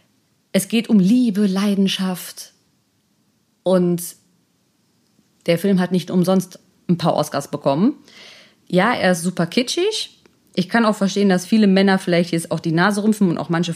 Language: German